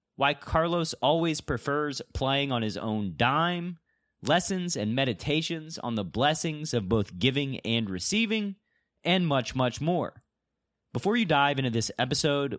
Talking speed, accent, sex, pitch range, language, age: 145 wpm, American, male, 120-165 Hz, English, 30-49